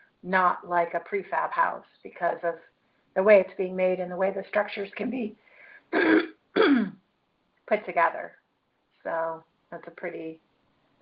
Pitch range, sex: 170-195 Hz, female